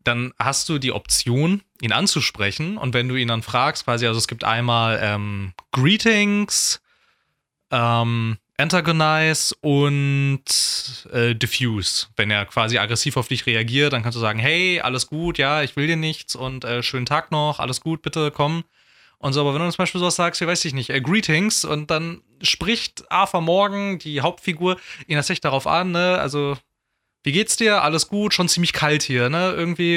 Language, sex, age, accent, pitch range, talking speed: German, male, 20-39, German, 125-170 Hz, 185 wpm